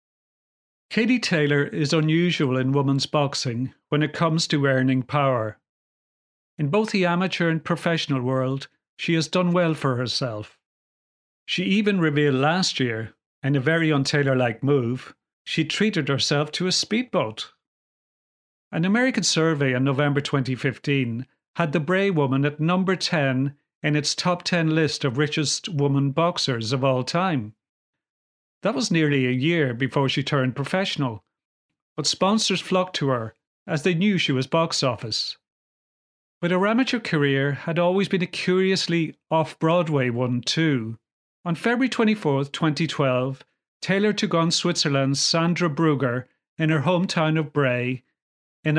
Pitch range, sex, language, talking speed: 135-170 Hz, male, English, 145 wpm